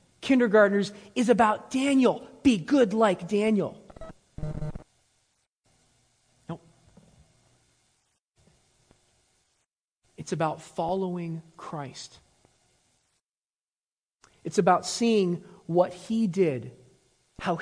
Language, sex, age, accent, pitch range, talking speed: English, male, 30-49, American, 185-235 Hz, 70 wpm